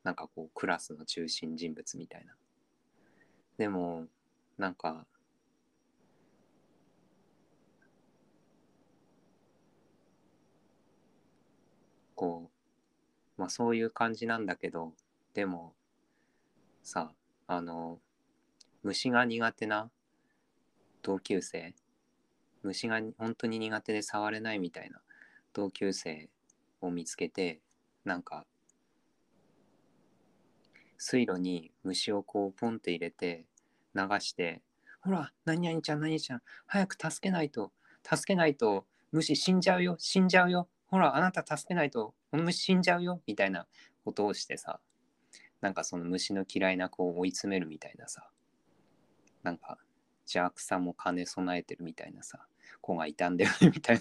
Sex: male